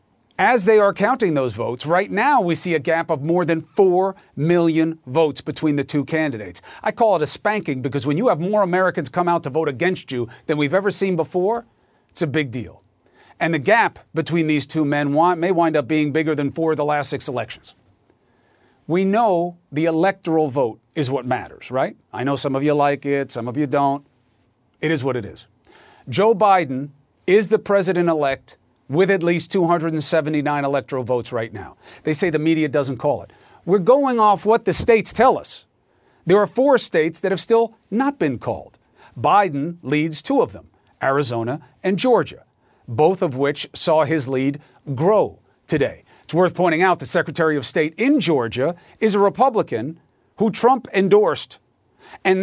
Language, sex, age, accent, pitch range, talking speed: English, male, 40-59, American, 140-190 Hz, 185 wpm